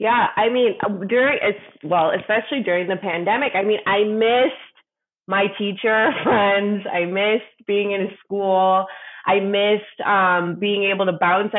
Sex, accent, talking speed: female, American, 155 wpm